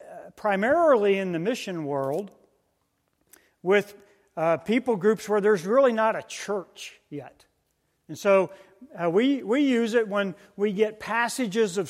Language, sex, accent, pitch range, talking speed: English, male, American, 175-220 Hz, 140 wpm